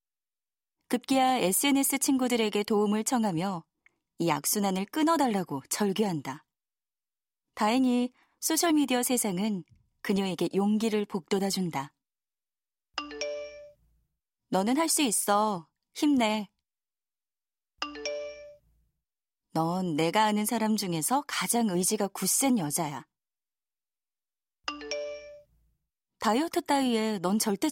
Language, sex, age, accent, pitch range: Korean, female, 20-39, native, 180-245 Hz